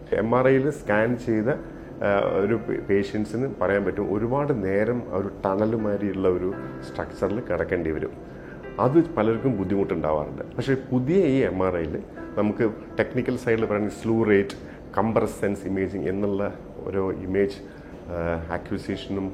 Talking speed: 115 wpm